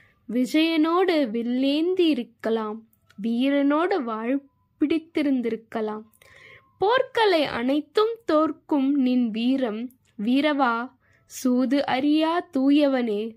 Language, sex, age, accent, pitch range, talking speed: Tamil, female, 20-39, native, 235-315 Hz, 65 wpm